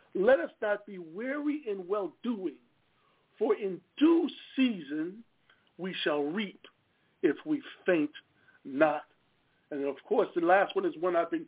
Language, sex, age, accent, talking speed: English, male, 50-69, American, 145 wpm